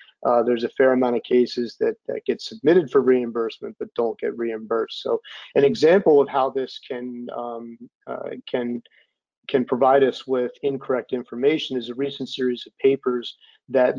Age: 30-49